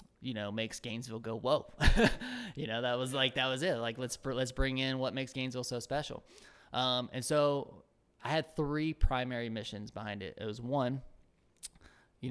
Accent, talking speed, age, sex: American, 185 wpm, 20-39, male